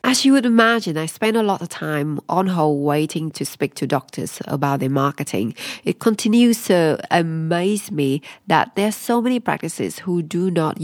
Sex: female